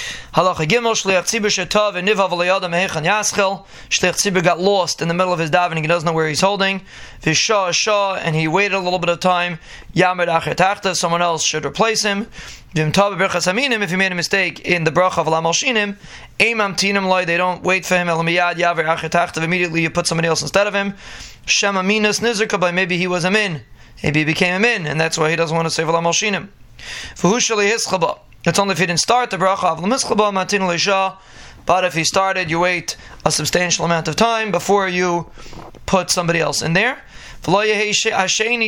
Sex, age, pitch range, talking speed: male, 20-39, 170-200 Hz, 175 wpm